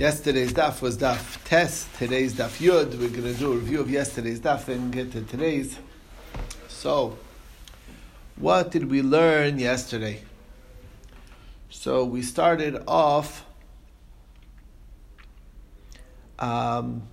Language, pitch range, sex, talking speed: English, 115-150 Hz, male, 110 wpm